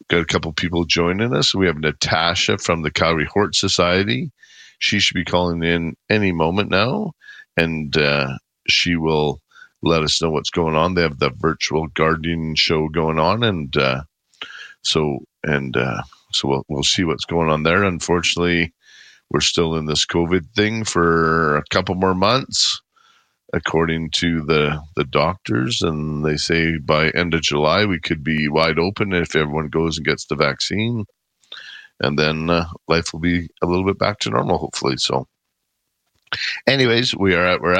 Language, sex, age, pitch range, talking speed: English, male, 50-69, 80-100 Hz, 170 wpm